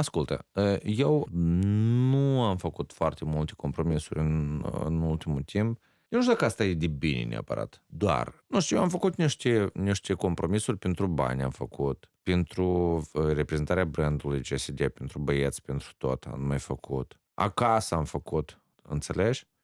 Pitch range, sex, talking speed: 75-110 Hz, male, 150 wpm